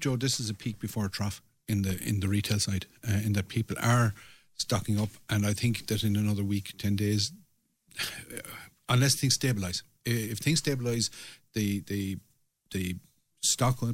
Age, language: 50-69, English